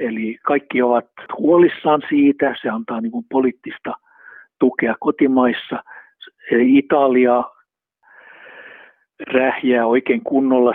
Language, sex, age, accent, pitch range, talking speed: Finnish, male, 60-79, native, 115-140 Hz, 85 wpm